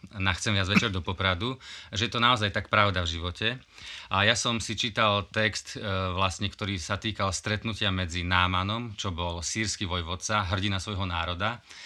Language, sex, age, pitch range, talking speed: Slovak, male, 30-49, 95-120 Hz, 175 wpm